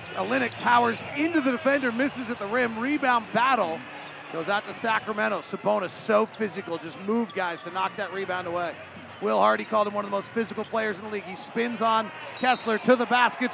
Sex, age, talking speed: male, 40-59, 205 wpm